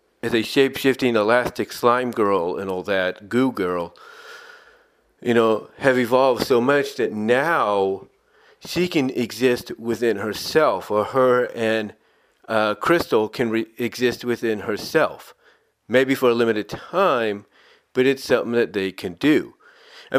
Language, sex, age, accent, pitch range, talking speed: English, male, 40-59, American, 110-135 Hz, 135 wpm